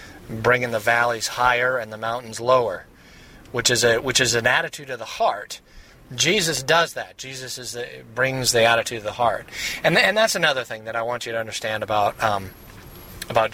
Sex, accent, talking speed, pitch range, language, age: male, American, 200 wpm, 110-125 Hz, English, 30-49